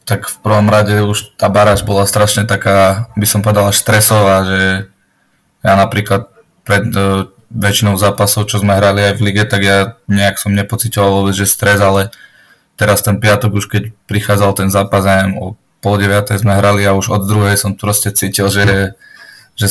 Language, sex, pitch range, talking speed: Slovak, male, 100-105 Hz, 180 wpm